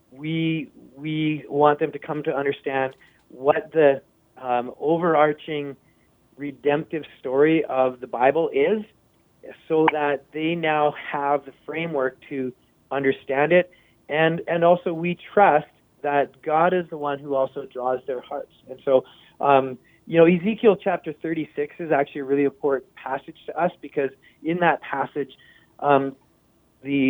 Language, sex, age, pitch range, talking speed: English, male, 30-49, 135-160 Hz, 145 wpm